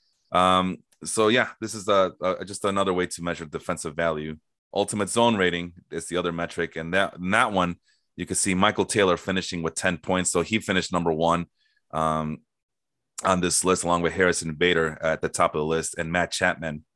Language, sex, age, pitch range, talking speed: English, male, 30-49, 85-105 Hz, 200 wpm